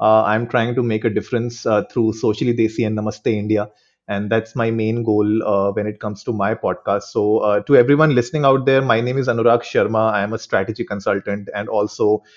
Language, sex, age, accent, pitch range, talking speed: Hindi, male, 30-49, native, 110-135 Hz, 220 wpm